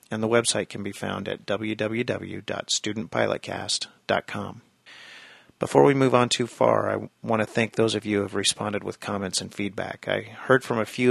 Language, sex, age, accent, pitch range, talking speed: English, male, 40-59, American, 100-115 Hz, 180 wpm